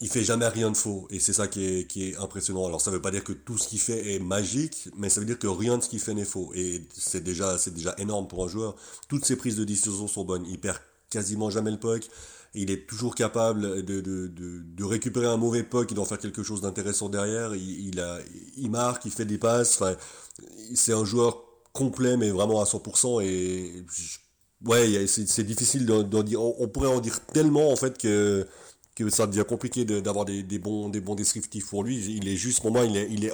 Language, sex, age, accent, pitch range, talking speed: French, male, 30-49, French, 95-115 Hz, 250 wpm